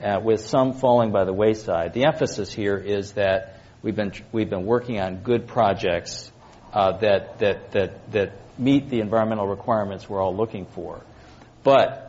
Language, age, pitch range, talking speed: English, 50-69, 105-130 Hz, 170 wpm